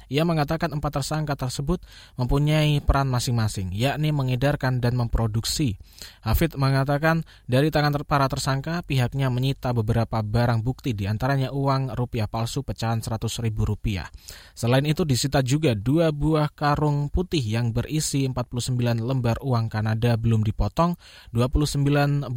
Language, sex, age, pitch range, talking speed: Indonesian, male, 20-39, 120-150 Hz, 130 wpm